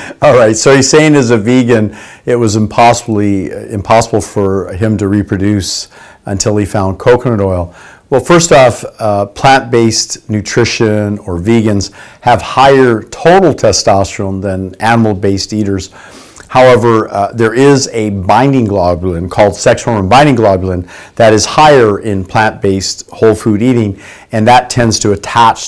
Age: 50-69